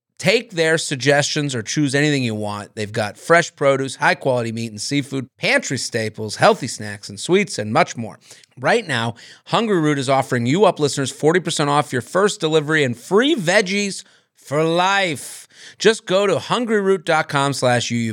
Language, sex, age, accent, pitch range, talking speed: English, male, 40-59, American, 115-155 Hz, 160 wpm